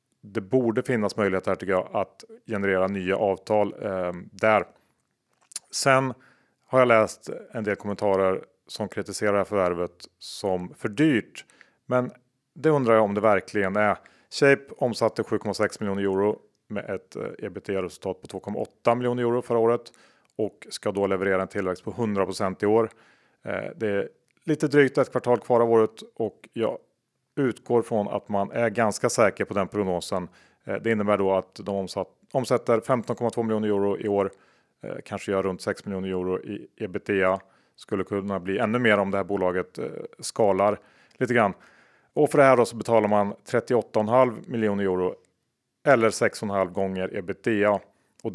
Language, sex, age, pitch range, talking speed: Swedish, male, 30-49, 95-115 Hz, 160 wpm